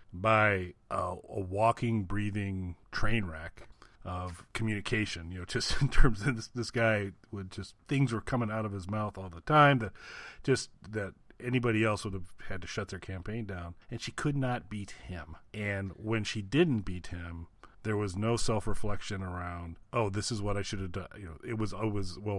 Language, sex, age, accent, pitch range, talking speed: English, male, 40-59, American, 95-115 Hz, 200 wpm